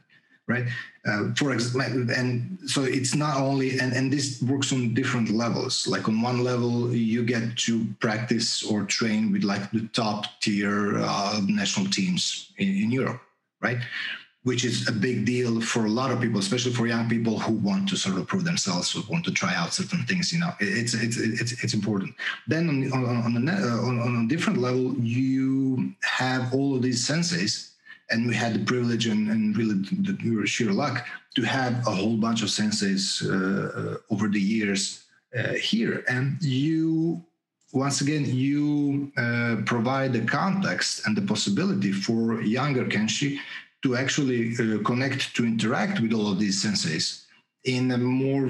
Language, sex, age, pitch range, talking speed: English, male, 40-59, 115-140 Hz, 175 wpm